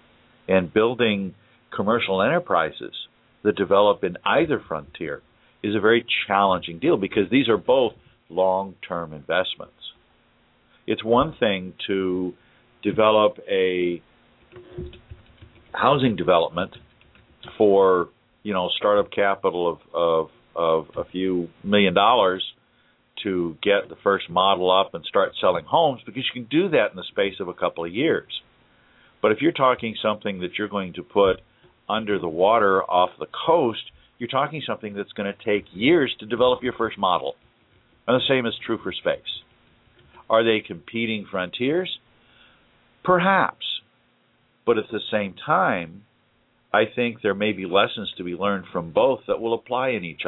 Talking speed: 150 wpm